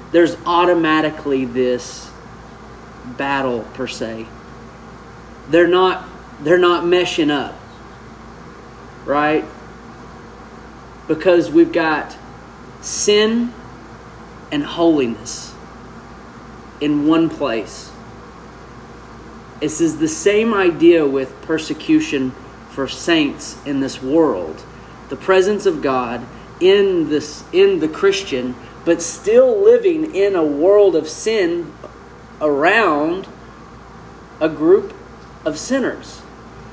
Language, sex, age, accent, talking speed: English, male, 30-49, American, 90 wpm